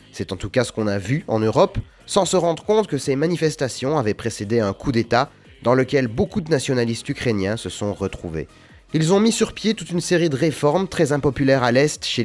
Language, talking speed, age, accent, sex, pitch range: French, 225 wpm, 30-49, French, male, 110-150 Hz